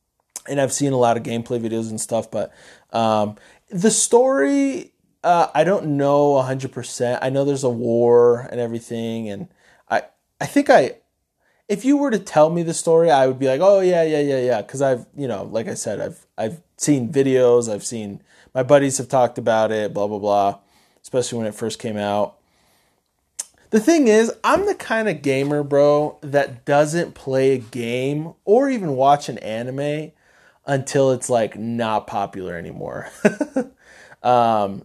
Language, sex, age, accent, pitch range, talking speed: English, male, 20-39, American, 115-145 Hz, 175 wpm